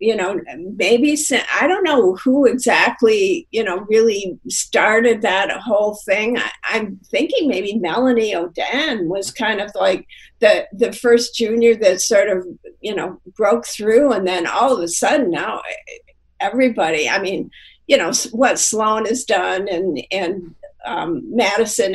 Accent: American